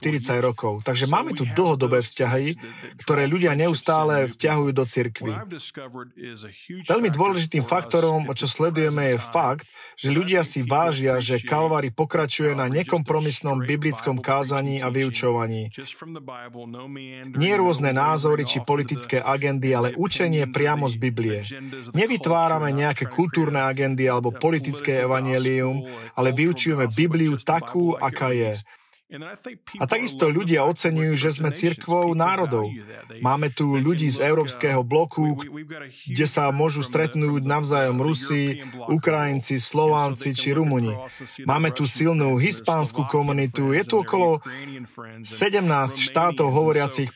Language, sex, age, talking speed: Slovak, male, 40-59, 120 wpm